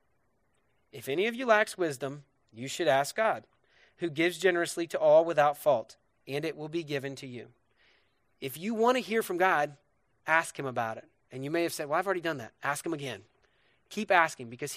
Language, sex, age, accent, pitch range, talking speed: English, male, 30-49, American, 135-175 Hz, 205 wpm